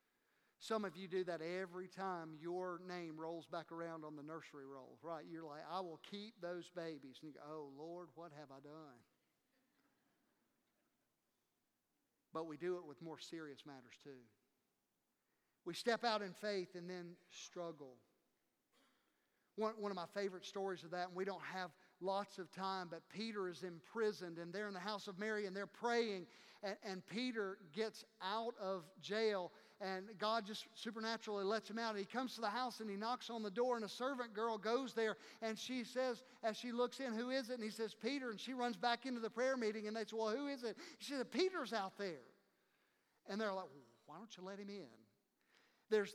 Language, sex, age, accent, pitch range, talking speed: English, male, 50-69, American, 175-225 Hz, 200 wpm